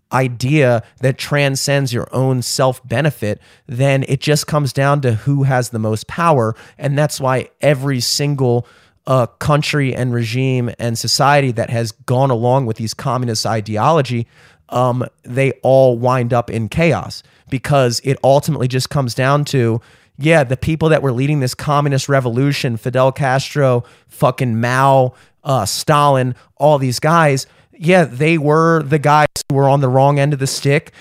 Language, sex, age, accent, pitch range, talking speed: English, male, 30-49, American, 130-155 Hz, 160 wpm